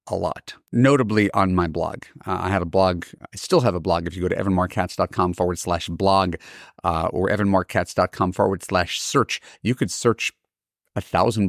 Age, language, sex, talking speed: 30-49, English, male, 185 wpm